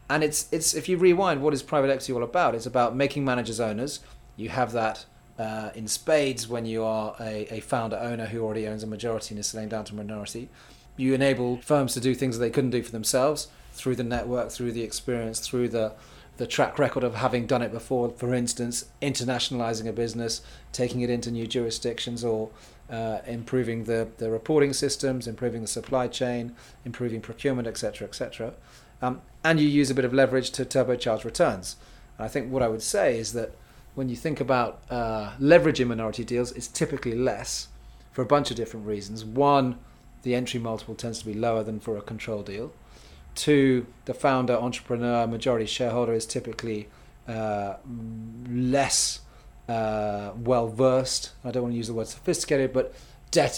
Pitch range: 110-130 Hz